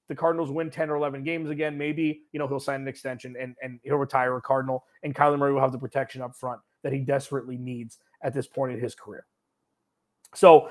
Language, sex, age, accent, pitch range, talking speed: English, male, 30-49, American, 140-190 Hz, 230 wpm